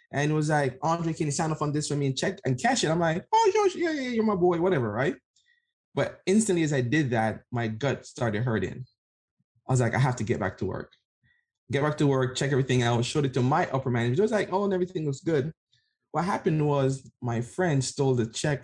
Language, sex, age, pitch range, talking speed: English, male, 20-39, 120-150 Hz, 250 wpm